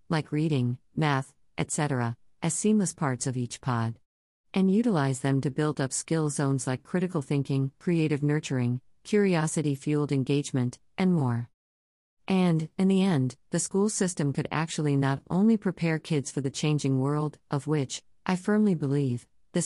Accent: American